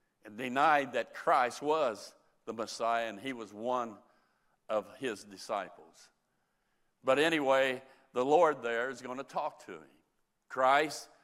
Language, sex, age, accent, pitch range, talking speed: English, male, 60-79, American, 120-160 Hz, 135 wpm